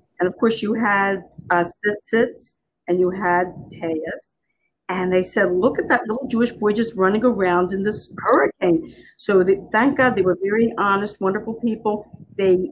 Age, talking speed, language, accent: 50-69, 175 wpm, English, American